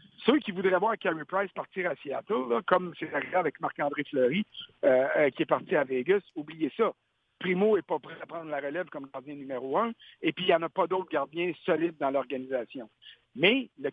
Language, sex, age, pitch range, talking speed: French, male, 60-79, 160-225 Hz, 210 wpm